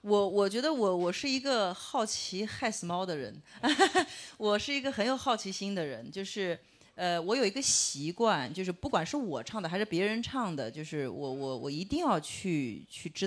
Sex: female